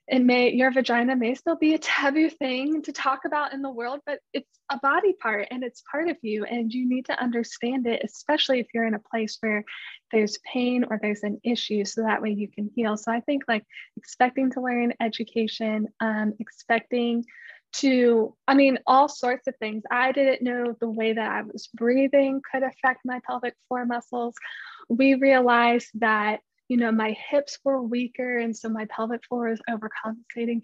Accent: American